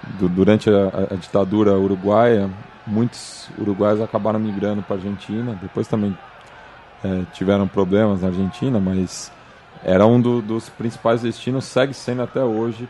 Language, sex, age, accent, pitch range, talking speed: Portuguese, male, 20-39, Brazilian, 100-125 Hz, 135 wpm